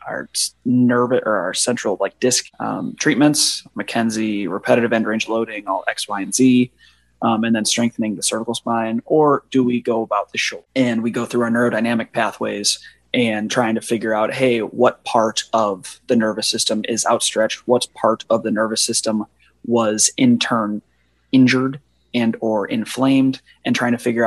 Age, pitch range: 20-39, 110-125 Hz